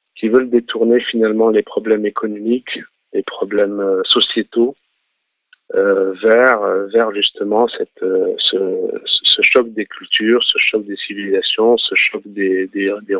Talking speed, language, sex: 140 wpm, French, male